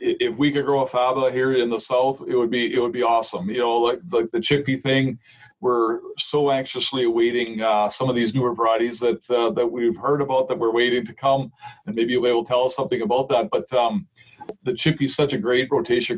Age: 40-59